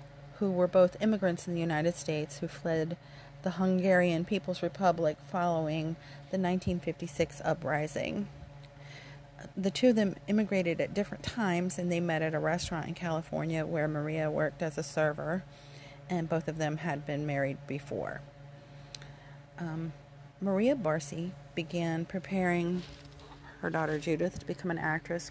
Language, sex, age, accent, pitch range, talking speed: English, female, 40-59, American, 145-180 Hz, 140 wpm